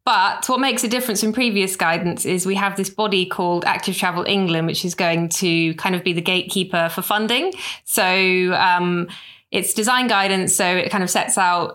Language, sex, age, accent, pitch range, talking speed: English, female, 20-39, British, 175-195 Hz, 200 wpm